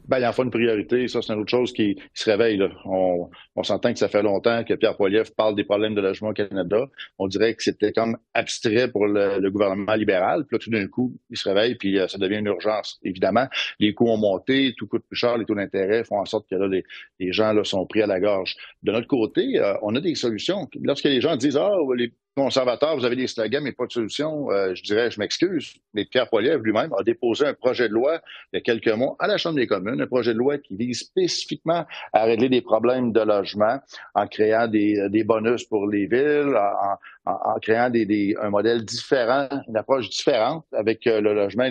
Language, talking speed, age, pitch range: French, 240 wpm, 50-69, 105-125 Hz